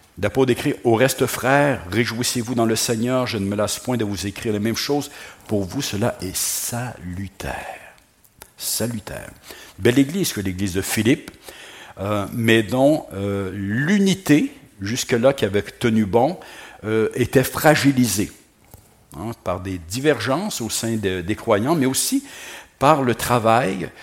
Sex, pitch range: male, 100-130 Hz